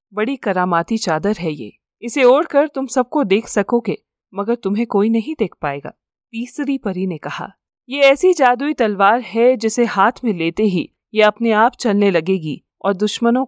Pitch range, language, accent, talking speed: 185-250 Hz, Hindi, native, 170 wpm